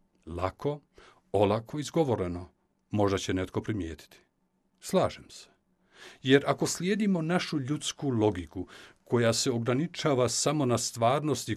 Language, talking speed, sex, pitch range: Croatian, 110 wpm, male, 105-165 Hz